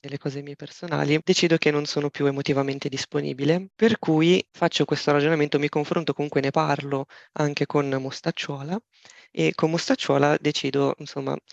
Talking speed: 150 wpm